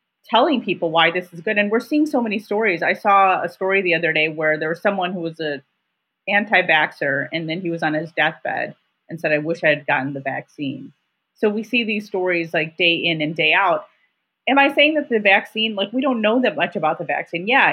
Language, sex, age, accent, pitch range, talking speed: English, female, 30-49, American, 160-205 Hz, 235 wpm